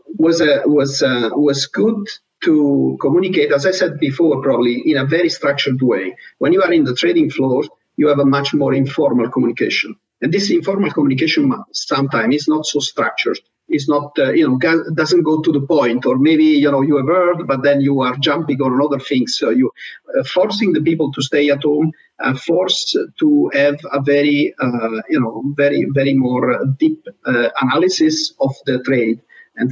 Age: 50-69